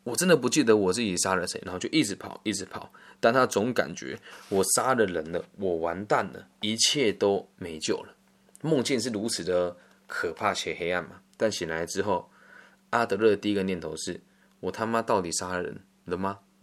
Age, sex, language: 20-39, male, Chinese